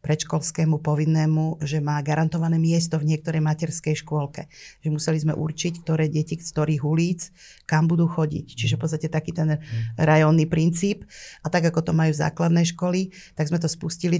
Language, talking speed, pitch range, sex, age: Slovak, 170 wpm, 155-165 Hz, female, 30-49